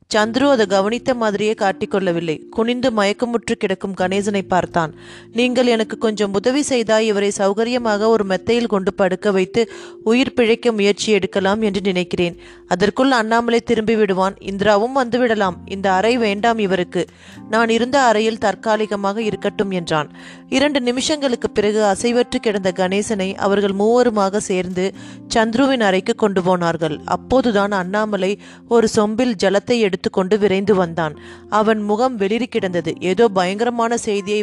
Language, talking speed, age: Tamil, 110 wpm, 30-49